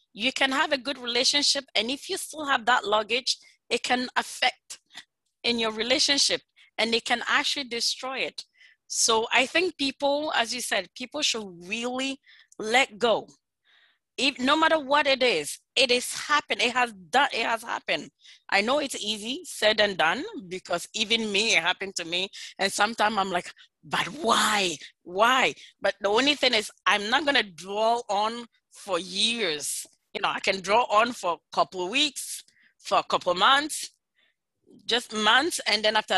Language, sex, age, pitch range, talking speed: English, female, 30-49, 215-280 Hz, 175 wpm